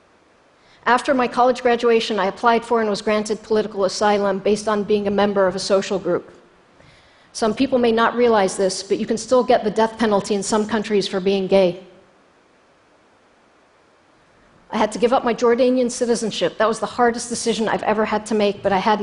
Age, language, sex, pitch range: 50-69, Chinese, female, 210-240 Hz